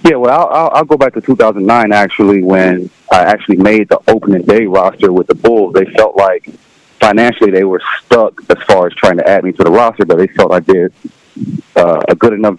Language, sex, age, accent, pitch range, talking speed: English, male, 30-49, American, 95-125 Hz, 220 wpm